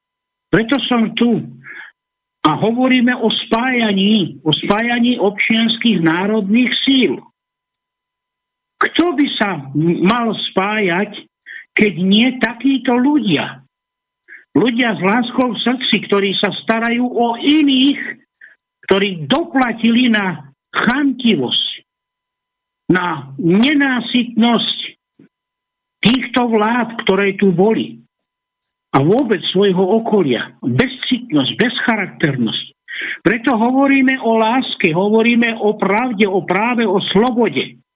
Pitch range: 195-260 Hz